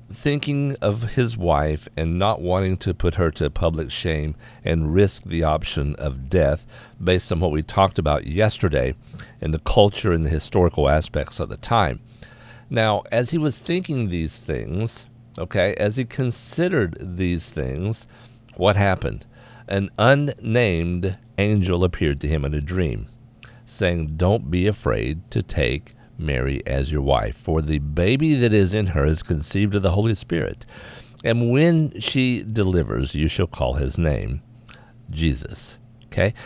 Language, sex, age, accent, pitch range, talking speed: English, male, 50-69, American, 80-120 Hz, 155 wpm